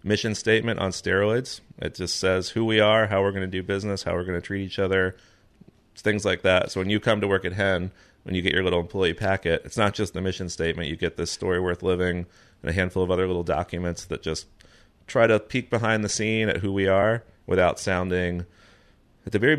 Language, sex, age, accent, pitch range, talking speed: English, male, 30-49, American, 85-105 Hz, 235 wpm